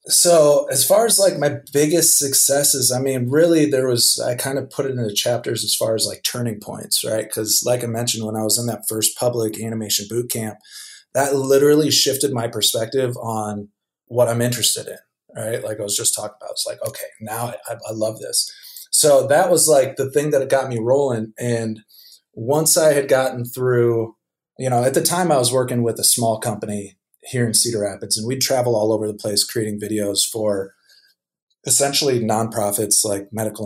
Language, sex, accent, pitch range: English, male, American, 110-140 Hz